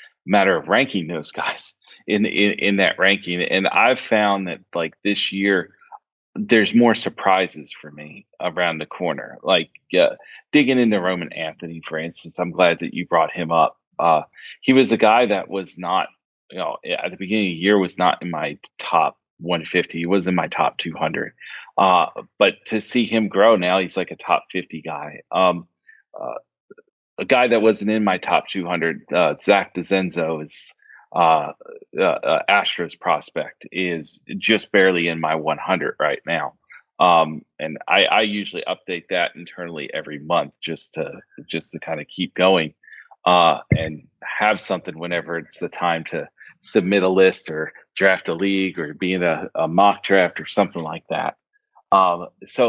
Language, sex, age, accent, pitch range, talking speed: English, male, 30-49, American, 85-110 Hz, 175 wpm